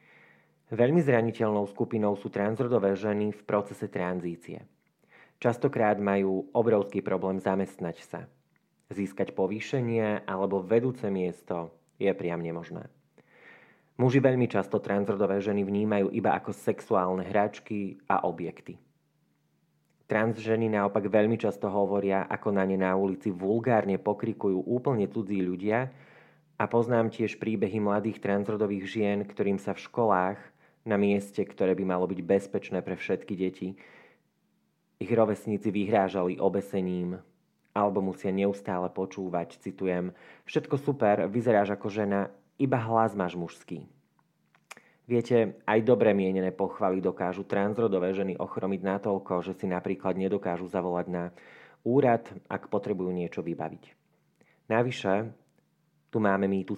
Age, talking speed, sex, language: 30-49, 120 wpm, male, Slovak